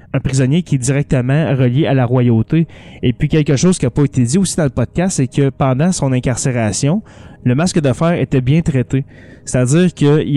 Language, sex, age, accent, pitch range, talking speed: French, male, 20-39, Canadian, 125-155 Hz, 210 wpm